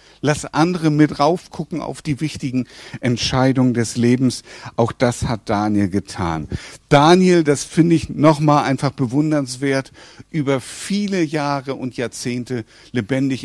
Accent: German